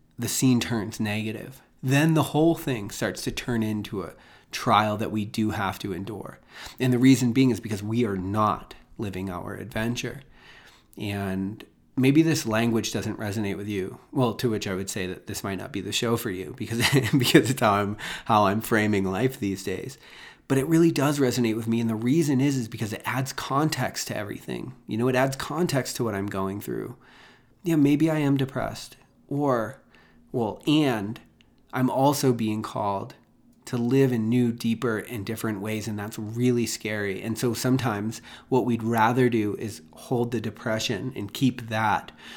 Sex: male